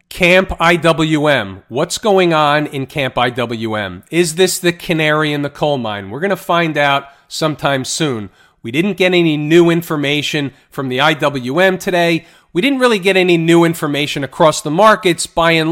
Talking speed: 170 wpm